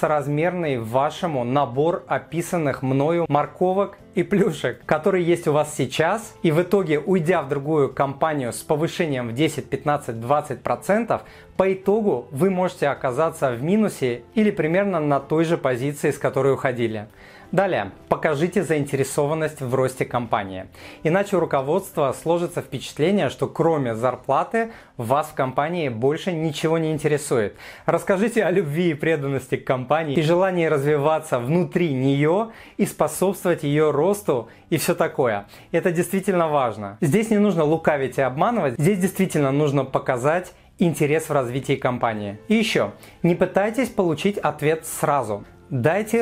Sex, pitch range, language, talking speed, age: male, 135-180 Hz, Russian, 140 wpm, 30-49